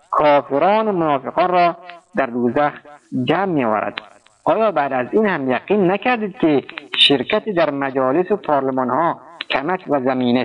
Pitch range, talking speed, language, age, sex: 145-195 Hz, 145 wpm, Persian, 50-69, male